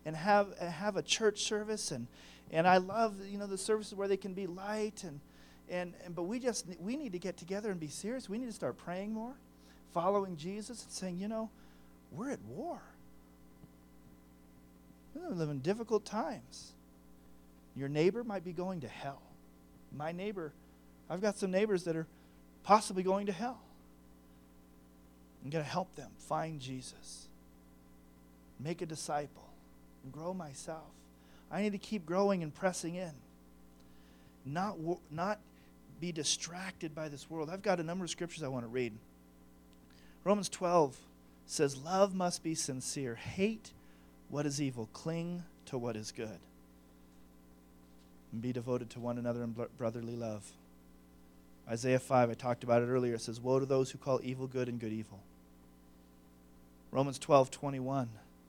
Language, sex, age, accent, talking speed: English, male, 40-59, American, 160 wpm